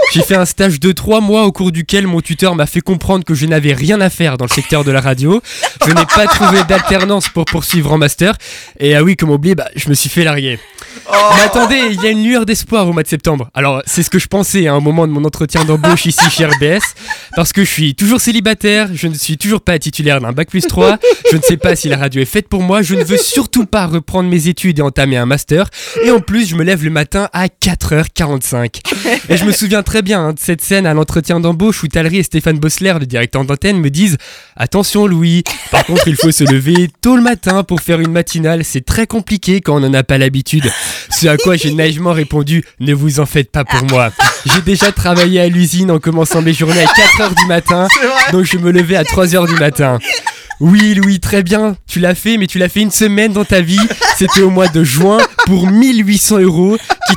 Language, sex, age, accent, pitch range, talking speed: French, male, 20-39, French, 155-200 Hz, 240 wpm